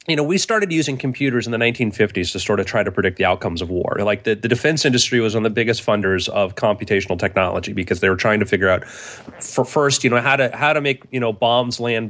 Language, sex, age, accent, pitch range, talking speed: English, male, 30-49, American, 105-150 Hz, 265 wpm